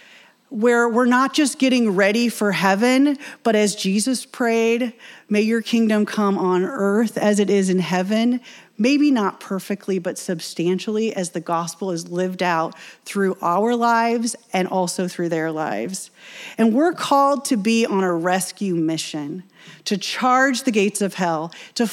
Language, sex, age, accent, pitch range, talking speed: English, female, 30-49, American, 180-230 Hz, 160 wpm